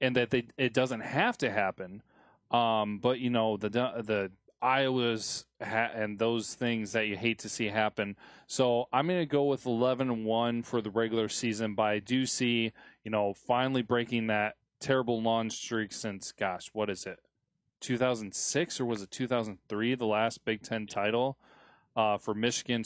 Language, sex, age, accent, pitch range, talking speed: English, male, 20-39, American, 110-125 Hz, 175 wpm